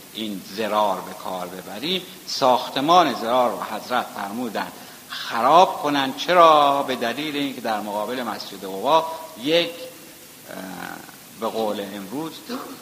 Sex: male